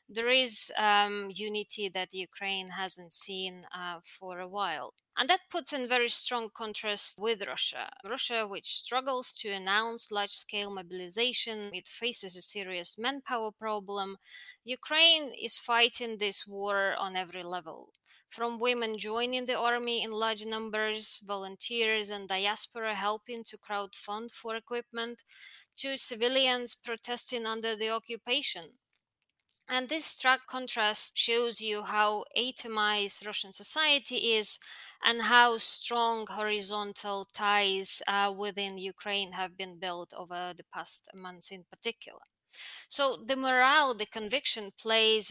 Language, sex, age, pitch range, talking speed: English, female, 20-39, 200-240 Hz, 130 wpm